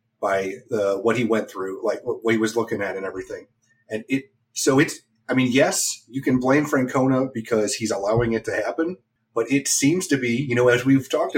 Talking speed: 220 wpm